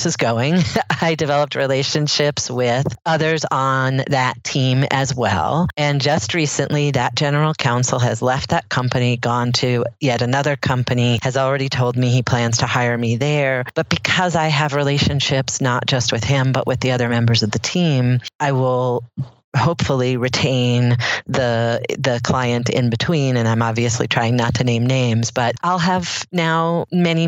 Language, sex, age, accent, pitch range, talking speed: English, female, 40-59, American, 125-145 Hz, 165 wpm